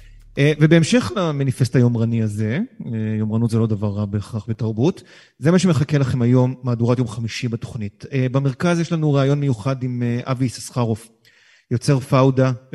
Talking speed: 140 wpm